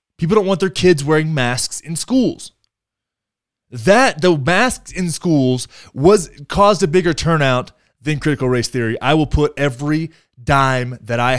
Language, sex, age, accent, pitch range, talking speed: English, male, 20-39, American, 120-175 Hz, 160 wpm